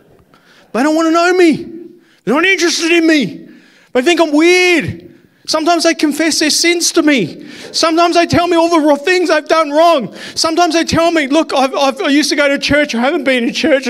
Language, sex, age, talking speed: English, male, 40-59, 215 wpm